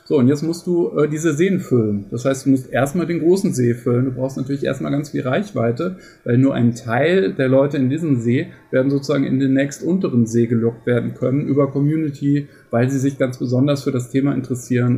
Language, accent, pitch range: German, German, 120-140 Hz